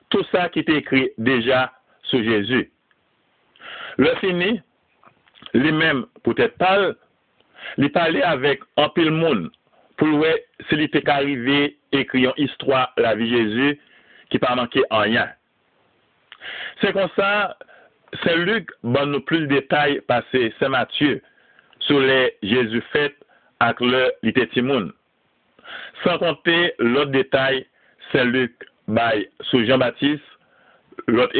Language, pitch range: French, 130-175 Hz